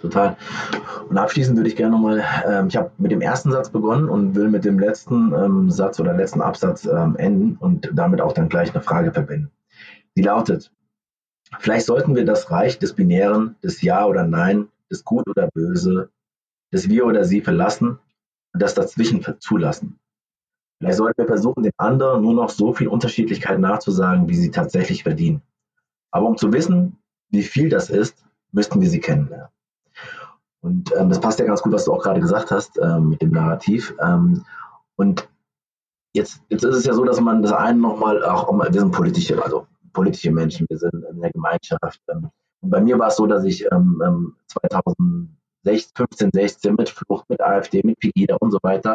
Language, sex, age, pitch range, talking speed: German, male, 30-49, 110-180 Hz, 190 wpm